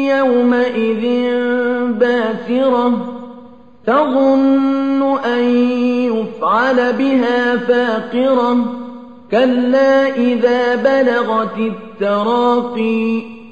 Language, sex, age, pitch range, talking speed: Arabic, male, 40-59, 230-260 Hz, 50 wpm